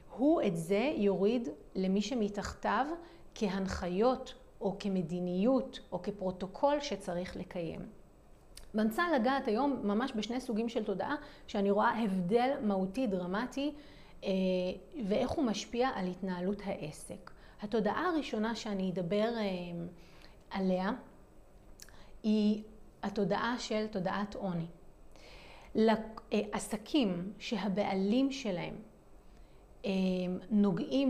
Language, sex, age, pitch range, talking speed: Hebrew, female, 30-49, 195-255 Hz, 90 wpm